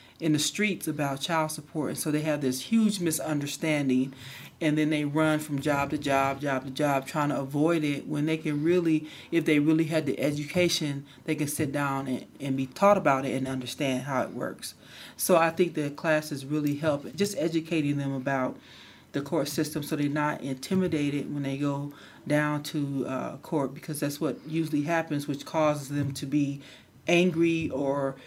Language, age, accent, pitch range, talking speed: English, 40-59, American, 140-160 Hz, 190 wpm